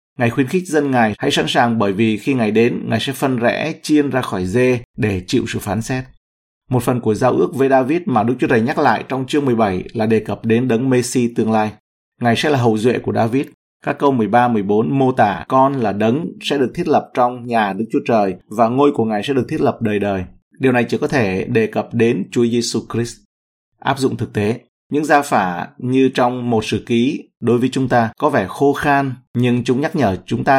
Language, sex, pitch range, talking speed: Vietnamese, male, 105-130 Hz, 235 wpm